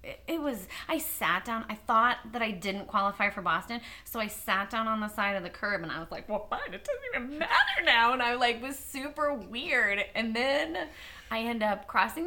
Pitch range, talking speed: 200-285 Hz, 225 wpm